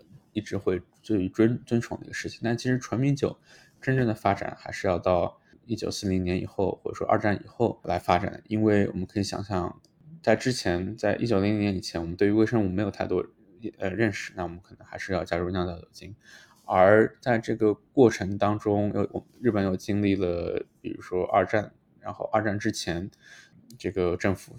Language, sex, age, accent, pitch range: Chinese, male, 20-39, native, 95-115 Hz